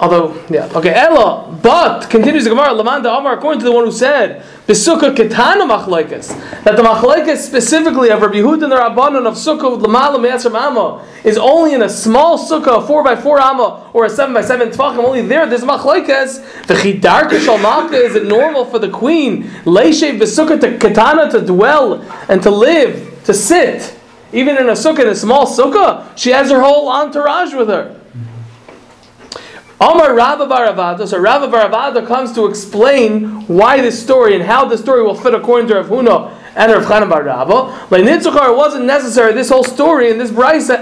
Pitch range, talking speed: 220-285 Hz, 170 wpm